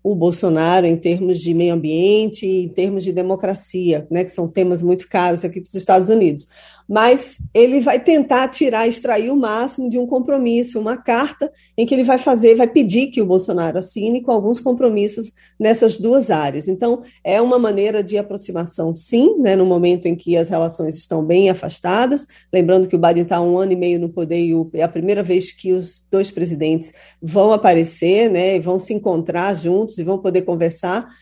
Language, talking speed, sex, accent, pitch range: Portuguese, 195 wpm, female, Brazilian, 180-225 Hz